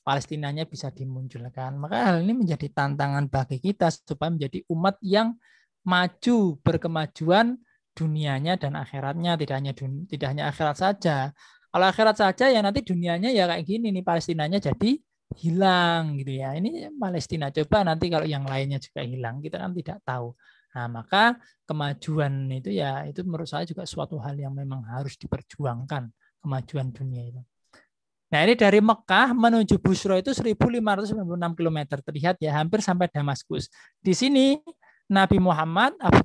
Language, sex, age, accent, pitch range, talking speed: Indonesian, male, 20-39, native, 140-205 Hz, 150 wpm